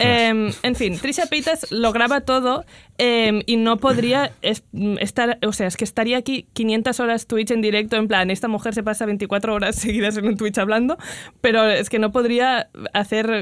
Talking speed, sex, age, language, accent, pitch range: 195 wpm, female, 20-39, Spanish, Spanish, 205-260 Hz